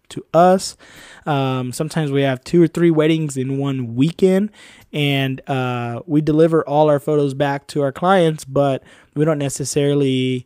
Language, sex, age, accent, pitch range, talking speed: English, male, 20-39, American, 130-150 Hz, 160 wpm